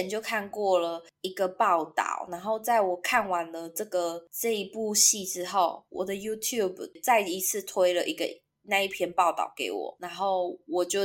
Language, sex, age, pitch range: Chinese, female, 20-39, 185-255 Hz